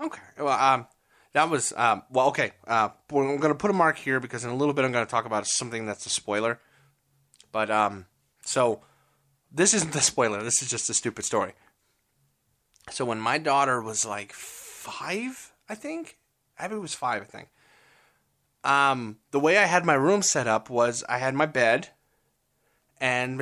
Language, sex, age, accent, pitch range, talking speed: English, male, 20-39, American, 120-155 Hz, 190 wpm